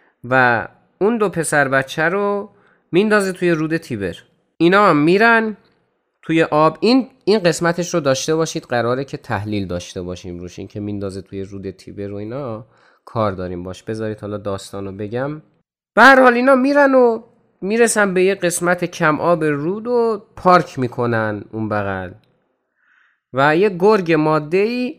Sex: male